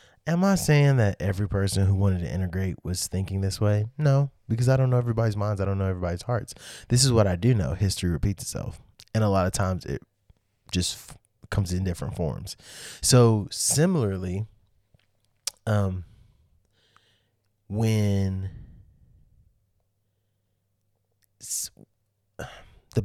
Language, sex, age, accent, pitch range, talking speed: English, male, 20-39, American, 95-115 Hz, 140 wpm